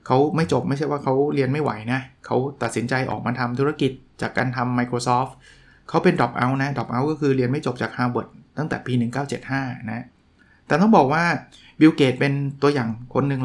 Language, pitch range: Thai, 120-140 Hz